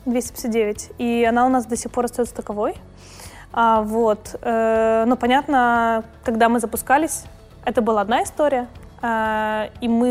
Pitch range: 215-245 Hz